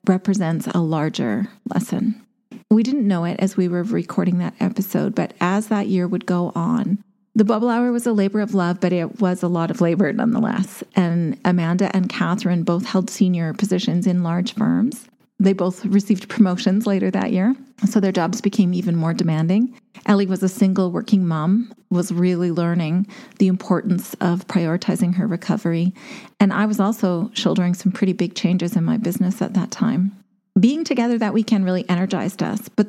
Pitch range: 185-220 Hz